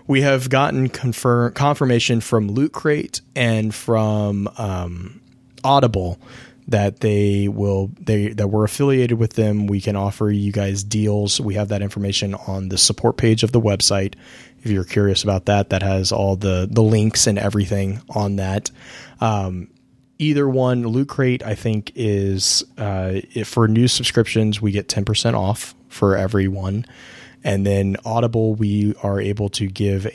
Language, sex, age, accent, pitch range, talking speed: English, male, 20-39, American, 100-120 Hz, 160 wpm